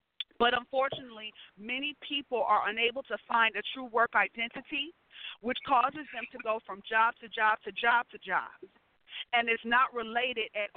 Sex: female